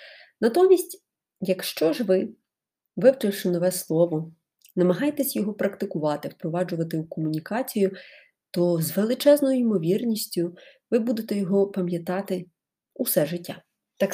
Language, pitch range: Ukrainian, 175-245 Hz